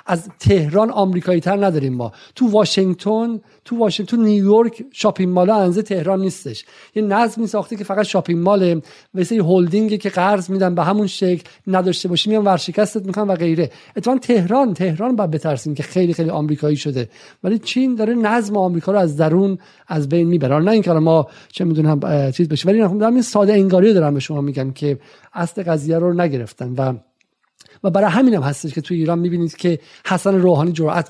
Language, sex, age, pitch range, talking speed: Persian, male, 50-69, 160-205 Hz, 185 wpm